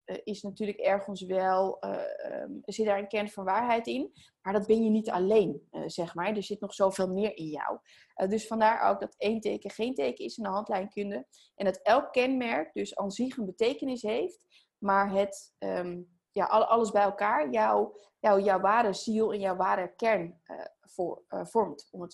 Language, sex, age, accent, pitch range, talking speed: Dutch, female, 20-39, Dutch, 195-240 Hz, 195 wpm